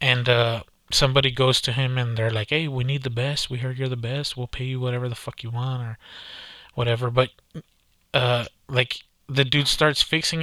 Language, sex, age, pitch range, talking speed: English, male, 20-39, 125-150 Hz, 205 wpm